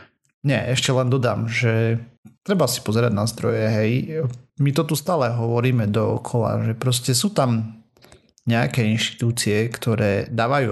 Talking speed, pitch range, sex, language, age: 140 wpm, 110-130 Hz, male, Slovak, 30-49